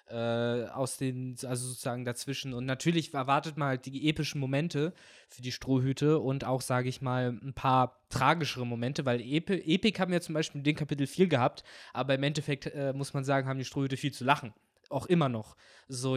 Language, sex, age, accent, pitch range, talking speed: German, male, 20-39, German, 125-150 Hz, 200 wpm